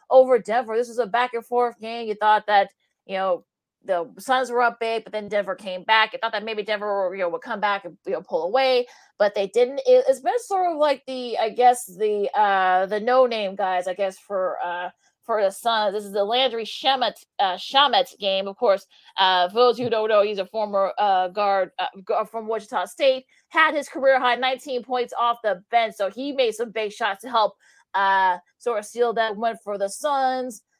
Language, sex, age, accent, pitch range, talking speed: English, female, 30-49, American, 205-260 Hz, 225 wpm